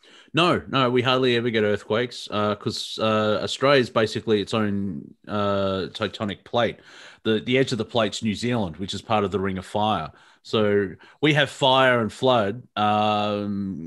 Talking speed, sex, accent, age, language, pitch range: 175 wpm, male, Australian, 30-49, English, 100-120 Hz